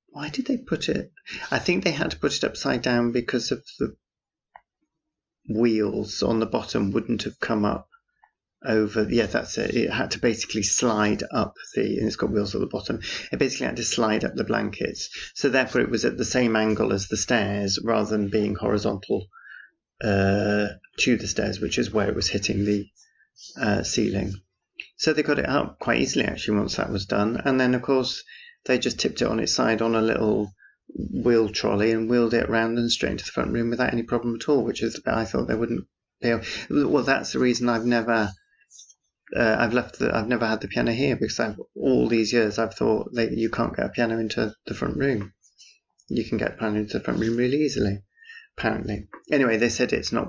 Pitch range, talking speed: 105-120 Hz, 215 wpm